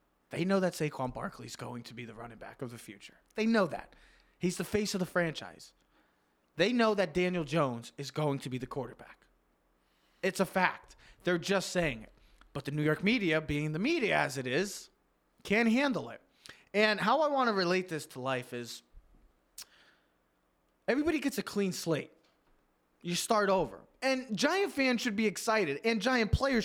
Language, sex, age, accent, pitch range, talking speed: English, male, 20-39, American, 140-220 Hz, 185 wpm